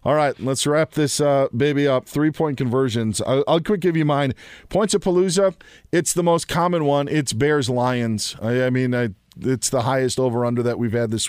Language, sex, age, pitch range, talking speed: English, male, 40-59, 115-145 Hz, 215 wpm